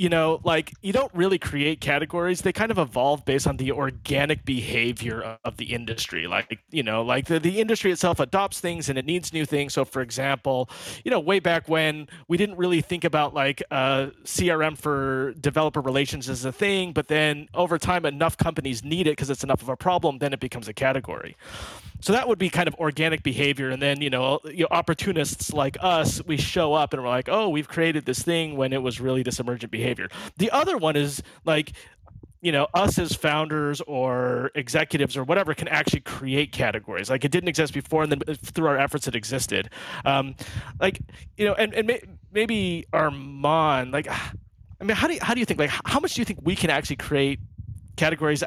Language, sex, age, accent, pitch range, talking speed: English, male, 30-49, American, 130-165 Hz, 210 wpm